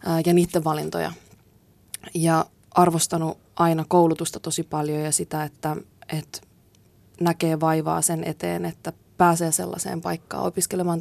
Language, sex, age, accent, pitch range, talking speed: Finnish, female, 20-39, native, 165-185 Hz, 120 wpm